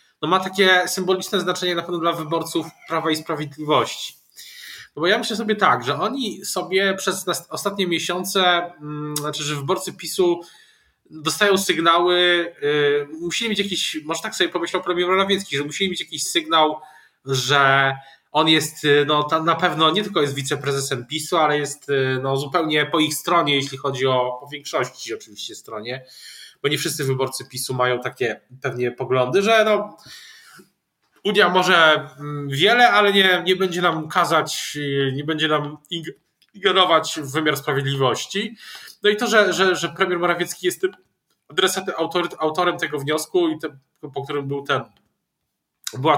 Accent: native